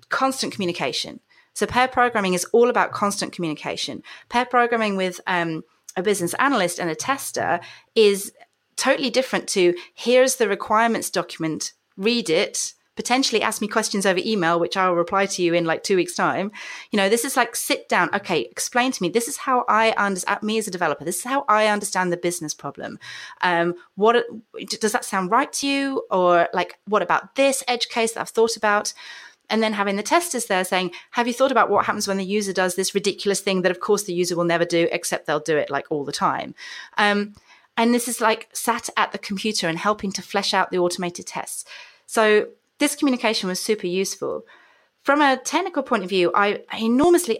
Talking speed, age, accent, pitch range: 205 wpm, 30-49, British, 180-230 Hz